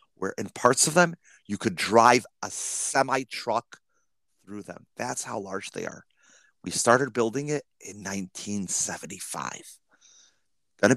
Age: 30-49